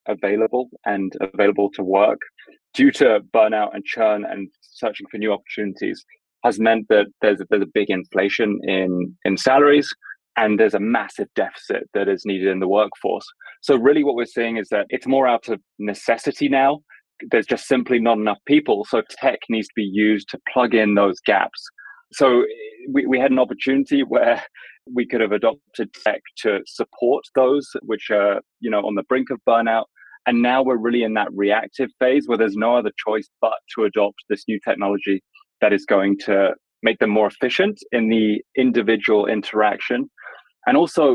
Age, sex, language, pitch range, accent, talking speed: 20-39, male, English, 105-135 Hz, British, 180 wpm